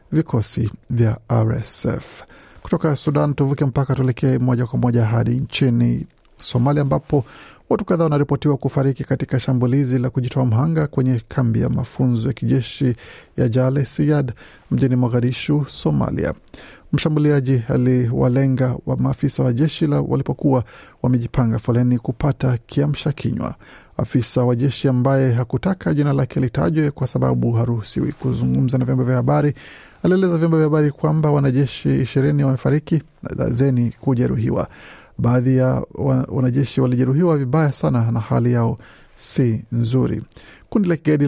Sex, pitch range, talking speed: male, 125-145 Hz, 130 wpm